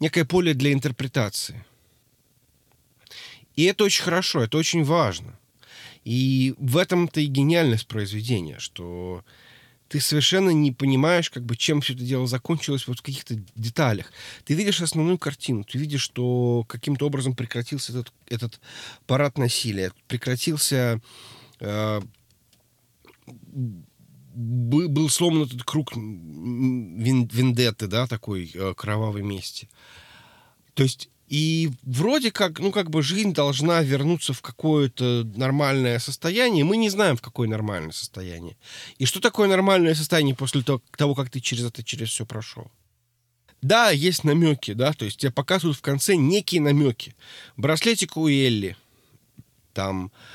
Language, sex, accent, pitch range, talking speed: Russian, male, native, 120-155 Hz, 130 wpm